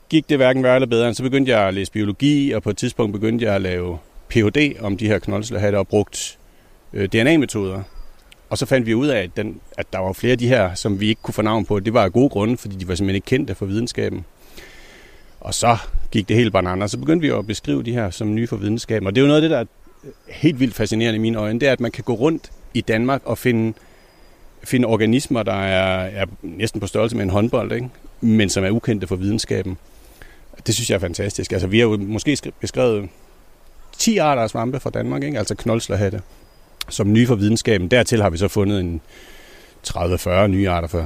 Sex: male